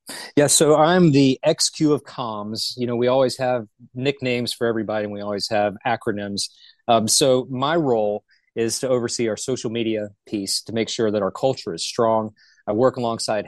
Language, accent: English, American